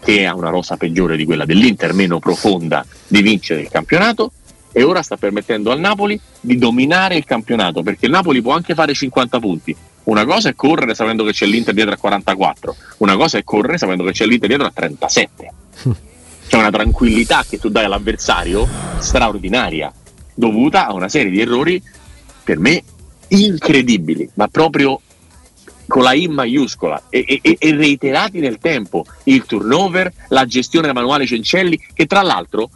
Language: Italian